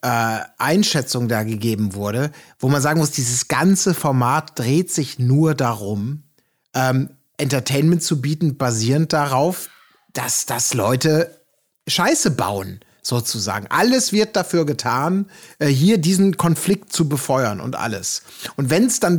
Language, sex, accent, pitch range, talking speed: German, male, German, 125-165 Hz, 140 wpm